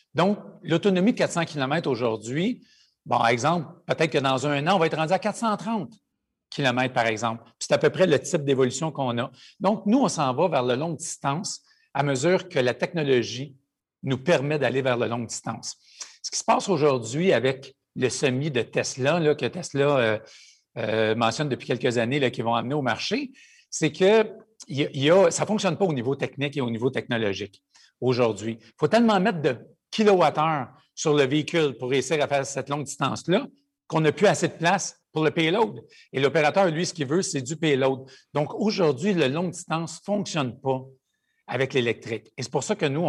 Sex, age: male, 50-69